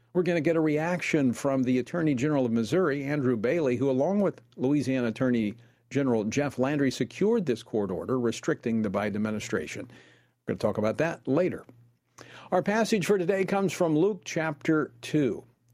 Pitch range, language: 120-165 Hz, English